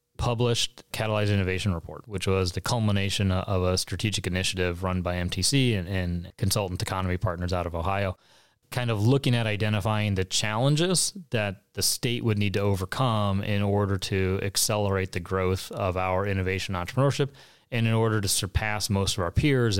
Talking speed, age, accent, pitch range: 170 wpm, 30-49, American, 95-120 Hz